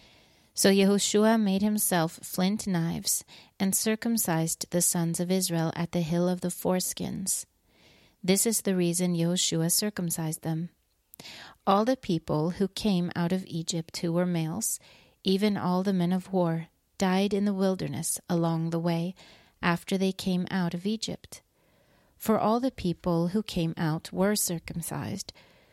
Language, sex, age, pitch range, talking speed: English, female, 30-49, 170-195 Hz, 150 wpm